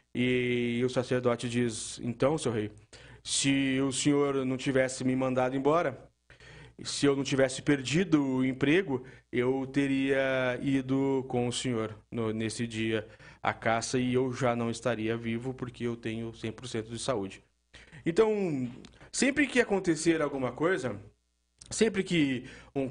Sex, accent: male, Brazilian